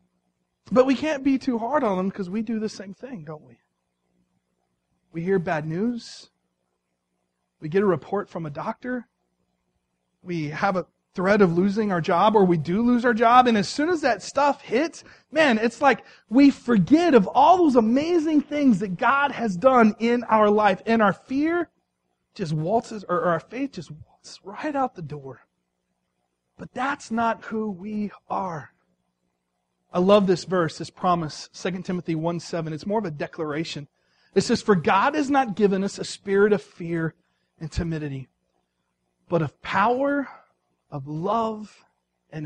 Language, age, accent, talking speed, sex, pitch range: English, 30-49, American, 170 wpm, male, 150-230 Hz